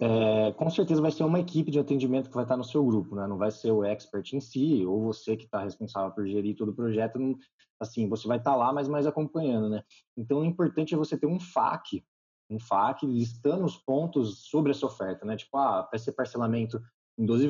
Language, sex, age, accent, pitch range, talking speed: Portuguese, male, 20-39, Brazilian, 110-145 Hz, 235 wpm